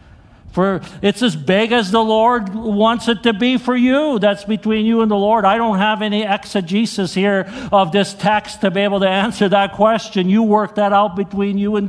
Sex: male